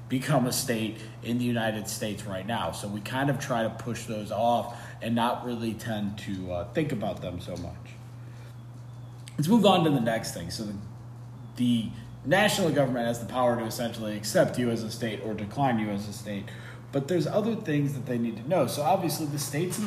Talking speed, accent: 215 wpm, American